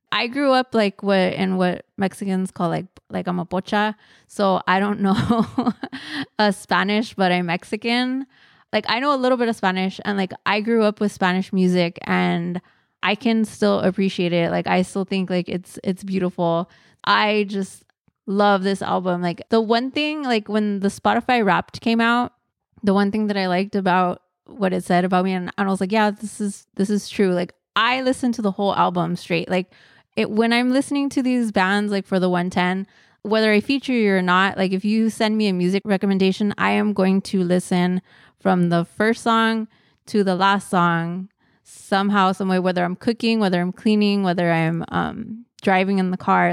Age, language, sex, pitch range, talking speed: 20-39, English, female, 180-215 Hz, 200 wpm